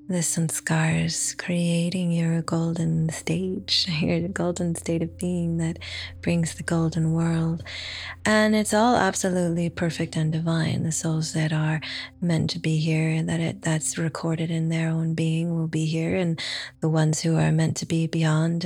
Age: 20-39